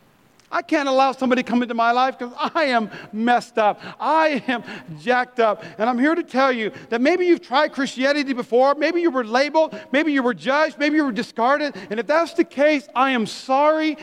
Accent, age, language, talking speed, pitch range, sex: American, 40-59, English, 215 wpm, 215-270 Hz, male